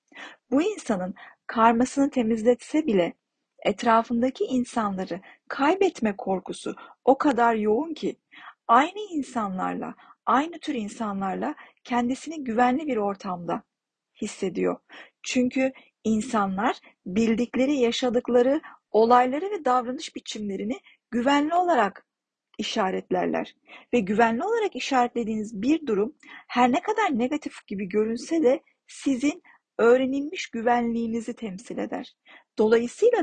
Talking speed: 95 wpm